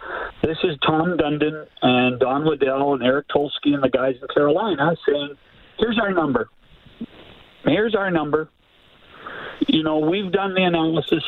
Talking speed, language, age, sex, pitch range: 150 wpm, English, 50-69, male, 145-215 Hz